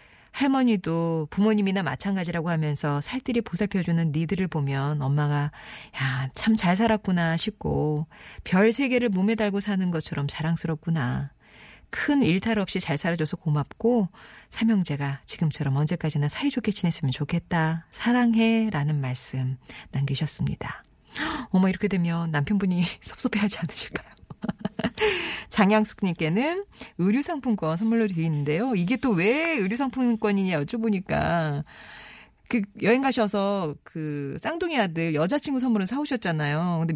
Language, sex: Korean, female